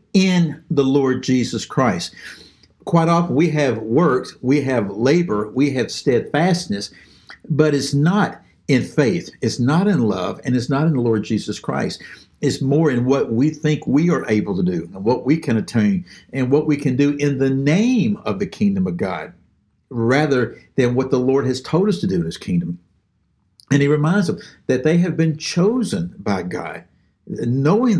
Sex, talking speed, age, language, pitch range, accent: male, 185 wpm, 60-79, English, 115-170 Hz, American